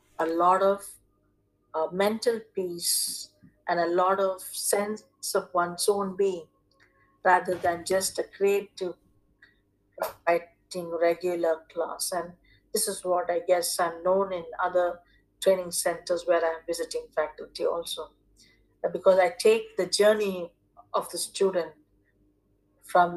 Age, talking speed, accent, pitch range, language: 50-69, 125 wpm, Indian, 165-210 Hz, English